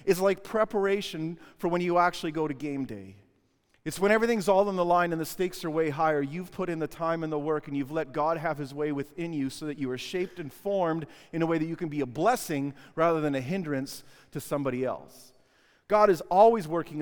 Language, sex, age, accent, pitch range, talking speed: English, male, 40-59, American, 150-215 Hz, 240 wpm